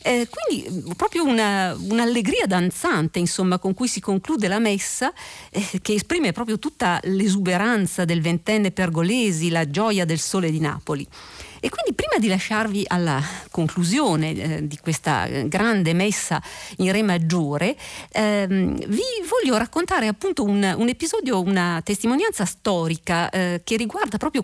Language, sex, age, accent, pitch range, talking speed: Italian, female, 50-69, native, 160-215 Hz, 140 wpm